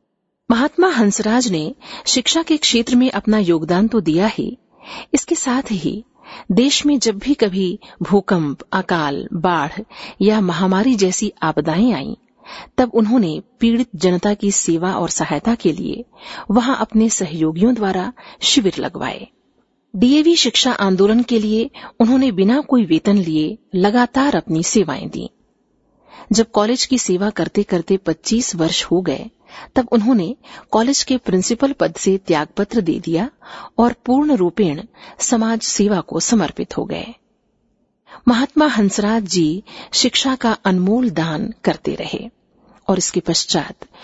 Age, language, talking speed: 50-69, Hindi, 135 wpm